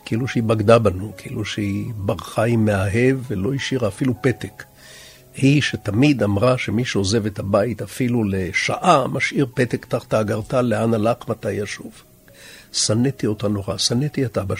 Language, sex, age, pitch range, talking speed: Hebrew, male, 60-79, 105-130 Hz, 150 wpm